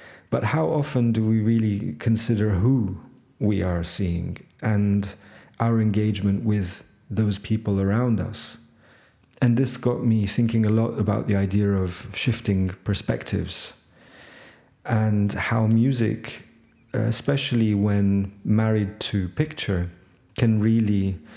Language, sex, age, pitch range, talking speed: English, male, 40-59, 100-115 Hz, 120 wpm